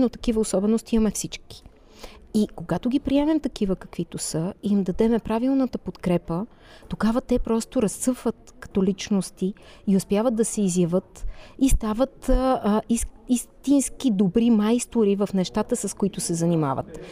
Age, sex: 30-49, female